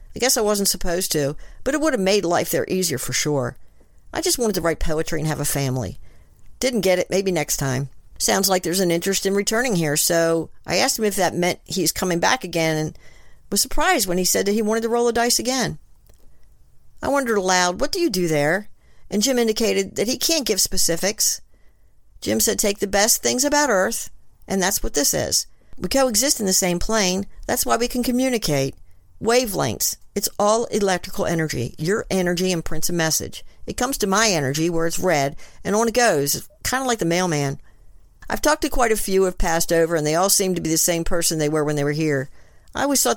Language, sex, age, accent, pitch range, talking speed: English, female, 50-69, American, 150-215 Hz, 225 wpm